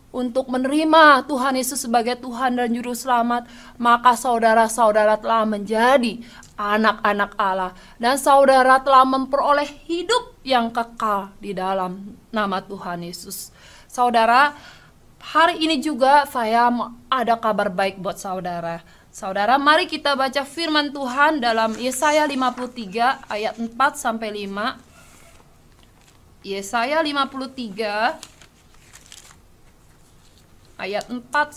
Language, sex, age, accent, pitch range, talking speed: English, female, 20-39, Indonesian, 215-290 Hz, 100 wpm